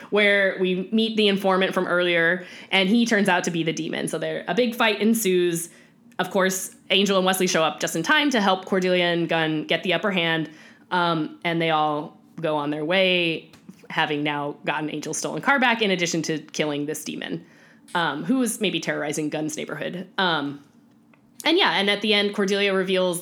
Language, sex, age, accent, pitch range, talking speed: English, female, 10-29, American, 165-210 Hz, 200 wpm